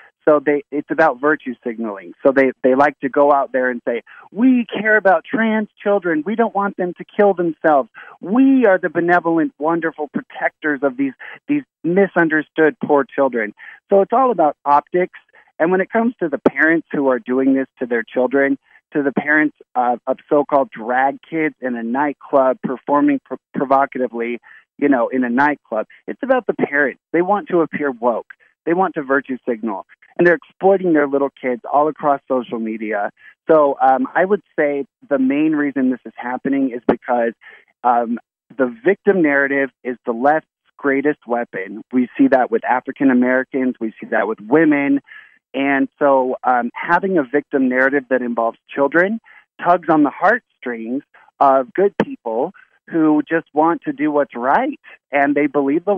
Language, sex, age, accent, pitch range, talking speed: English, male, 50-69, American, 130-175 Hz, 175 wpm